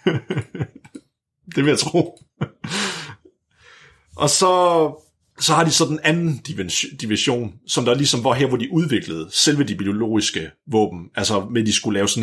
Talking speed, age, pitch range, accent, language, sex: 150 wpm, 30-49, 100-145 Hz, native, Danish, male